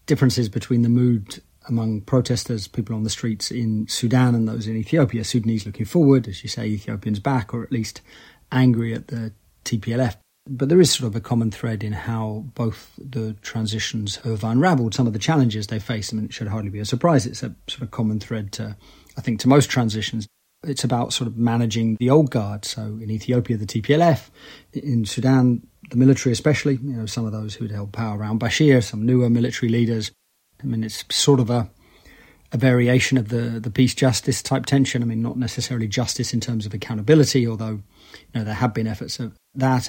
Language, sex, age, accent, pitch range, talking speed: English, male, 30-49, British, 110-130 Hz, 205 wpm